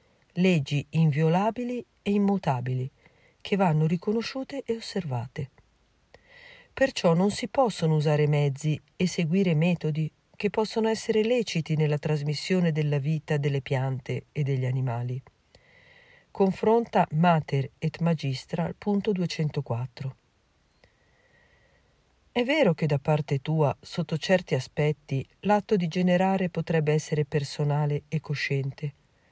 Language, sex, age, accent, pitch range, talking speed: Italian, female, 40-59, native, 145-200 Hz, 110 wpm